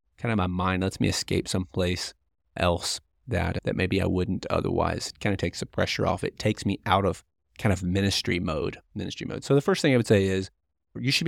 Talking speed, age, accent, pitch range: 230 wpm, 30-49, American, 95-115 Hz